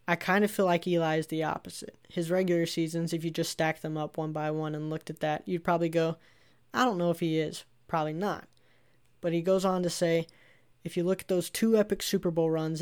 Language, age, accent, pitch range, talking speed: English, 10-29, American, 155-175 Hz, 245 wpm